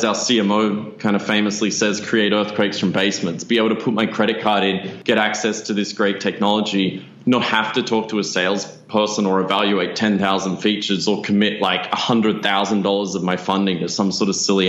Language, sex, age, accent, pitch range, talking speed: English, male, 20-39, Australian, 95-115 Hz, 190 wpm